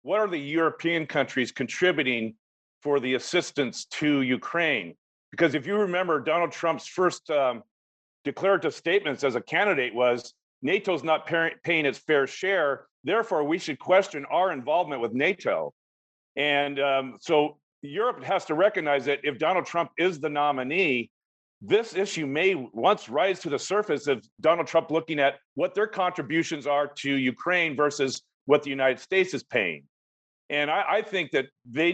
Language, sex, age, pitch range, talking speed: English, male, 50-69, 135-170 Hz, 160 wpm